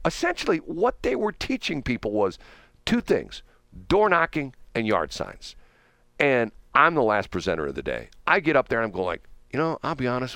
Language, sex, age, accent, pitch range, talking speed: English, male, 50-69, American, 115-155 Hz, 195 wpm